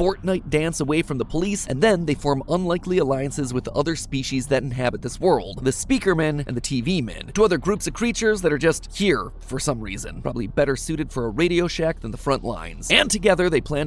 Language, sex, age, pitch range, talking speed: English, male, 30-49, 135-170 Hz, 220 wpm